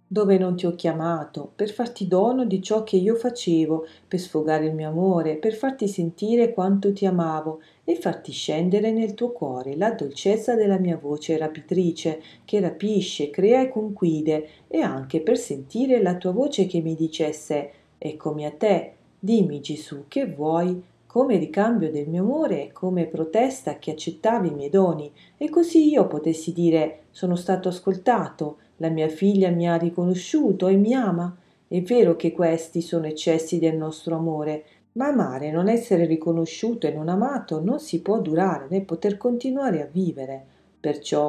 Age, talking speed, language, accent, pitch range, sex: 40-59, 165 wpm, Italian, native, 155-205 Hz, female